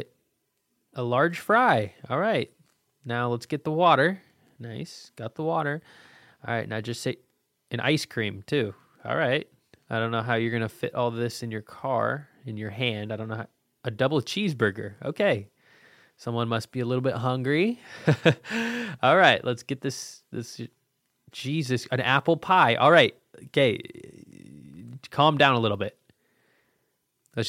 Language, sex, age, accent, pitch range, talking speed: English, male, 20-39, American, 120-165 Hz, 165 wpm